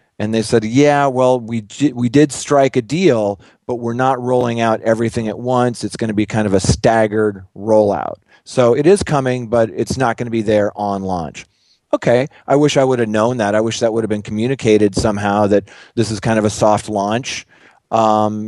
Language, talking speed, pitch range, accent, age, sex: English, 215 wpm, 105-130 Hz, American, 40-59, male